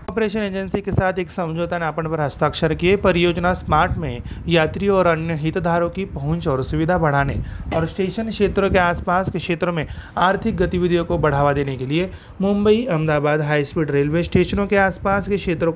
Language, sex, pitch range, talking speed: Marathi, male, 155-190 Hz, 180 wpm